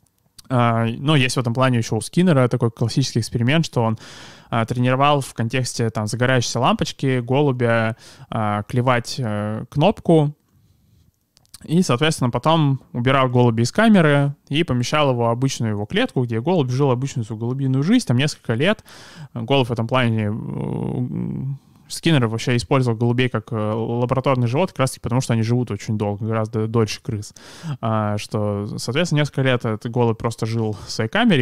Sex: male